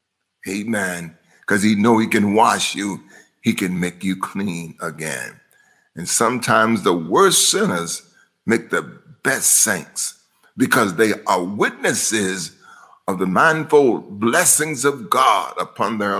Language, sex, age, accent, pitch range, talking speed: English, male, 50-69, American, 100-140 Hz, 130 wpm